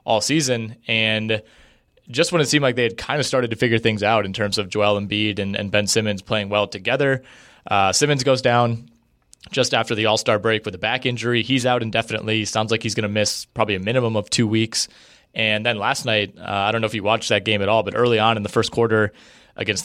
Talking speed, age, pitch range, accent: 240 wpm, 20-39, 105-120 Hz, American